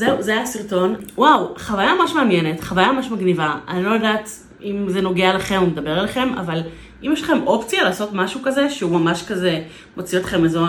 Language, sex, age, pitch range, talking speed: Hebrew, female, 30-49, 175-245 Hz, 195 wpm